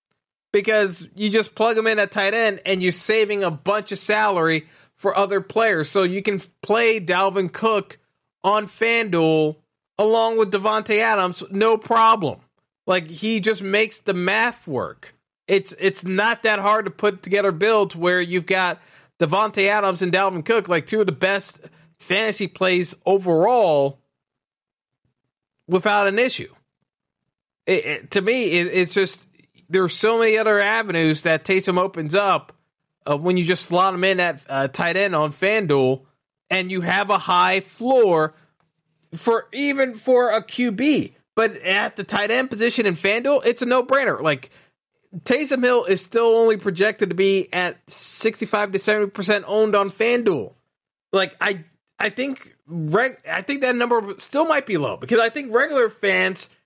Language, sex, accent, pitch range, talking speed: English, male, American, 180-220 Hz, 165 wpm